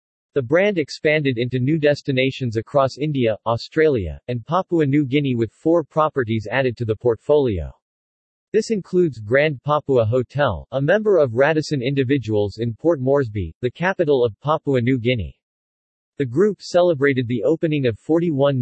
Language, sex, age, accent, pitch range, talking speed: English, male, 40-59, American, 120-150 Hz, 150 wpm